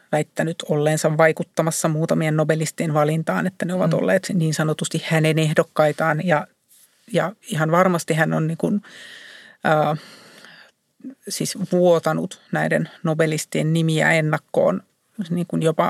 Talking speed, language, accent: 100 wpm, Finnish, native